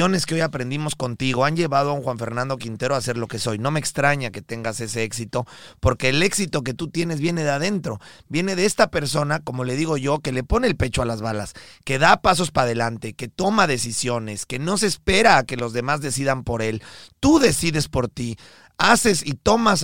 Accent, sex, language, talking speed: Mexican, male, Spanish, 220 wpm